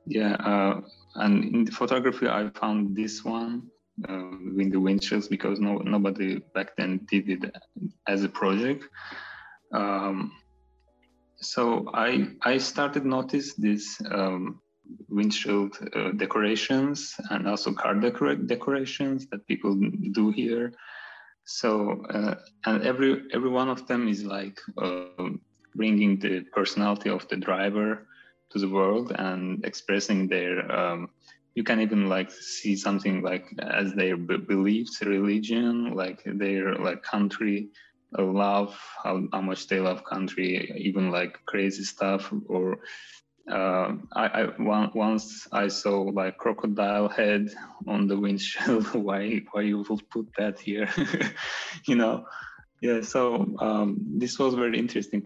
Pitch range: 95-110 Hz